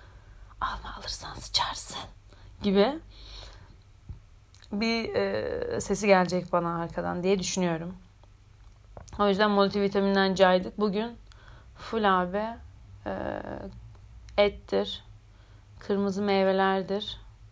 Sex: female